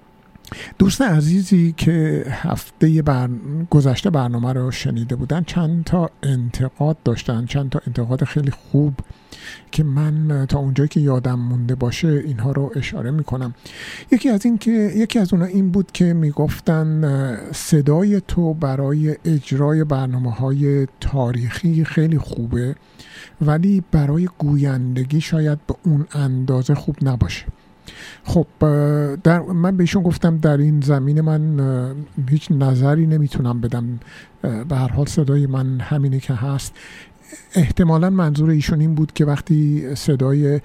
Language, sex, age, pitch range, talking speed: Persian, male, 50-69, 130-155 Hz, 130 wpm